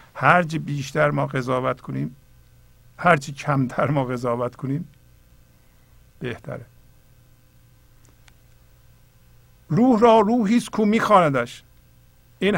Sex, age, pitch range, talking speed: male, 50-69, 125-180 Hz, 80 wpm